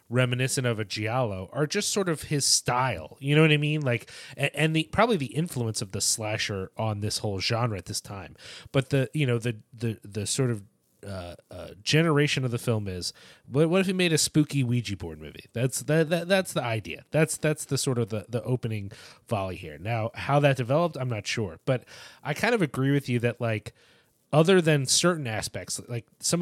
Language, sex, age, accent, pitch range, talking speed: English, male, 30-49, American, 115-145 Hz, 215 wpm